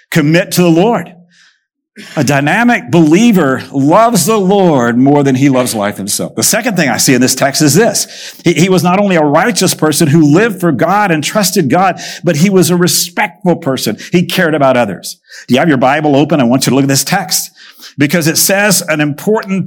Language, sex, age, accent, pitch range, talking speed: English, male, 50-69, American, 150-195 Hz, 215 wpm